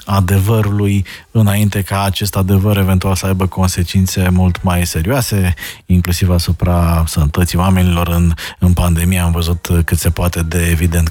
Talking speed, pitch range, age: 140 wpm, 90-115 Hz, 20-39